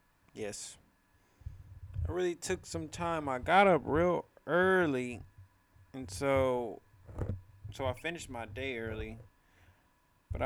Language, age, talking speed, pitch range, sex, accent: English, 20-39, 115 wpm, 95-135 Hz, male, American